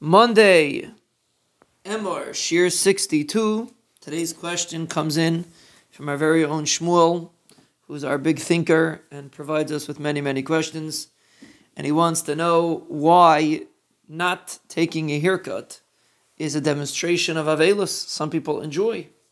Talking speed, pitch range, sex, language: 130 wpm, 150-180 Hz, male, English